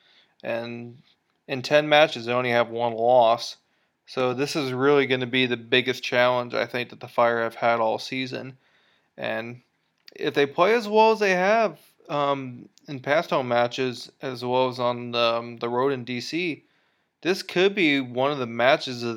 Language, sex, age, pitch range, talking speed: English, male, 20-39, 120-145 Hz, 190 wpm